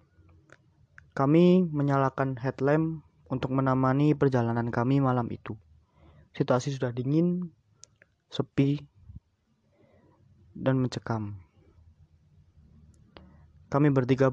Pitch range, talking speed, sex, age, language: 100-135 Hz, 70 wpm, male, 20-39, Indonesian